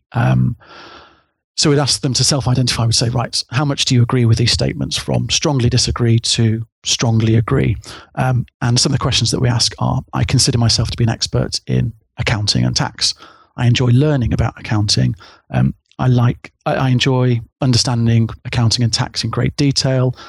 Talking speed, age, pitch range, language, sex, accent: 185 wpm, 40-59, 115-130 Hz, English, male, British